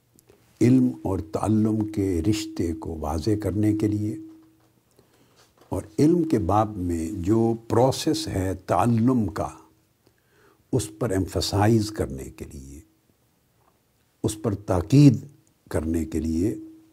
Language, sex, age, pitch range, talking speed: Urdu, male, 60-79, 95-120 Hz, 115 wpm